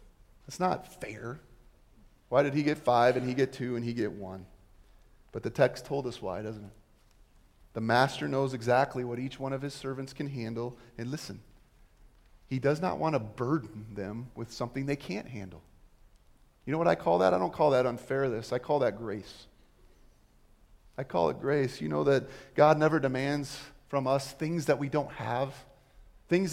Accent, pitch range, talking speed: American, 120-180 Hz, 190 wpm